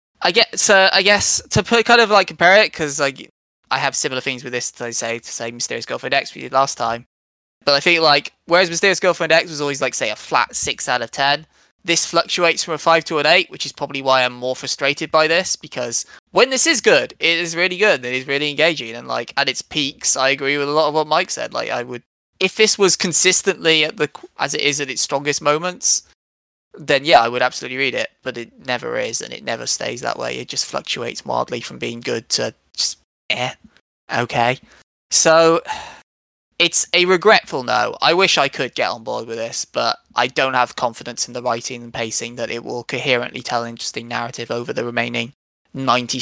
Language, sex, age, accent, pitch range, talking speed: English, male, 20-39, British, 120-170 Hz, 225 wpm